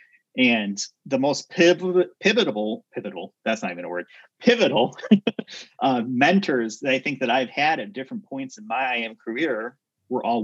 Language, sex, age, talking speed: English, male, 30-49, 155 wpm